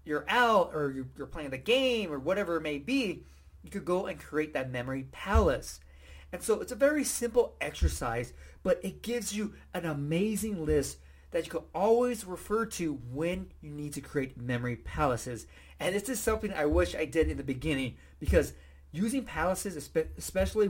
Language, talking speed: English, 180 wpm